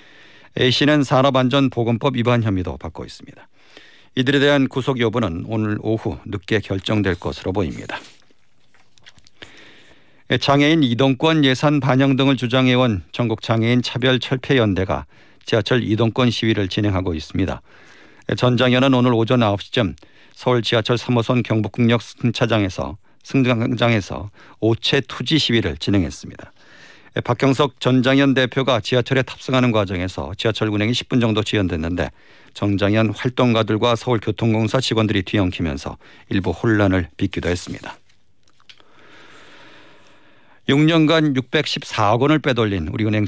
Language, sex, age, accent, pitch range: Korean, male, 50-69, native, 105-130 Hz